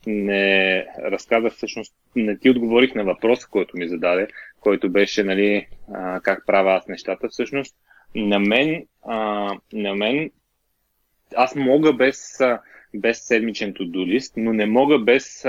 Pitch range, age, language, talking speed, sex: 110-135 Hz, 20-39, Bulgarian, 140 wpm, male